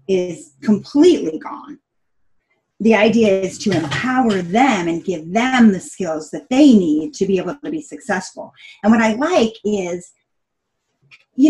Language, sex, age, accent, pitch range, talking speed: English, female, 30-49, American, 175-250 Hz, 150 wpm